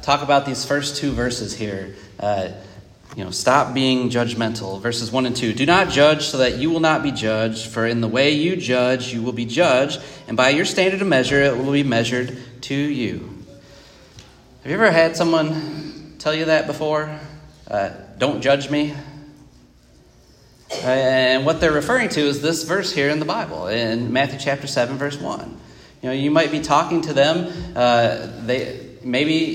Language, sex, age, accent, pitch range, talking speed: English, male, 30-49, American, 120-155 Hz, 185 wpm